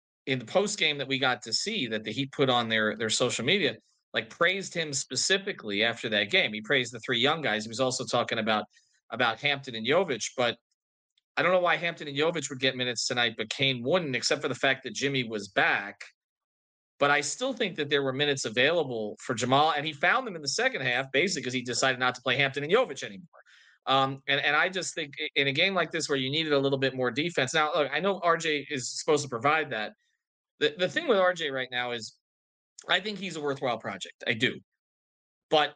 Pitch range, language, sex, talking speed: 125-160 Hz, English, male, 235 wpm